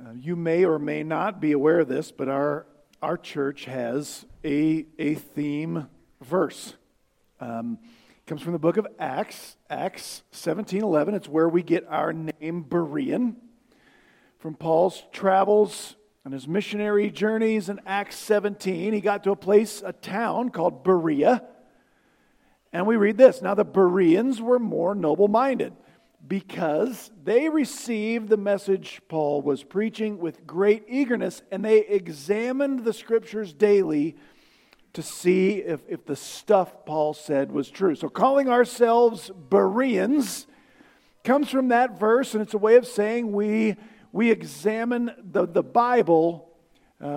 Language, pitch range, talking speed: English, 165-230 Hz, 145 wpm